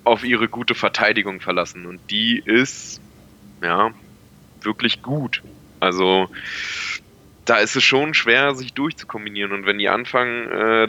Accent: German